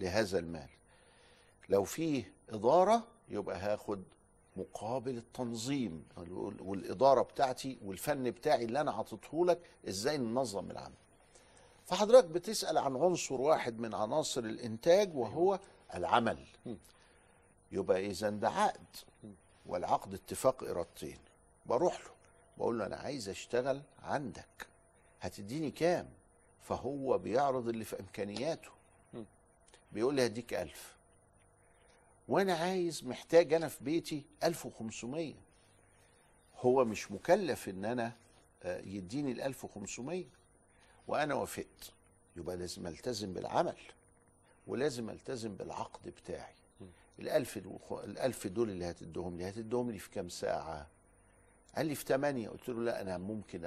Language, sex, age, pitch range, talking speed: Arabic, male, 60-79, 95-140 Hz, 115 wpm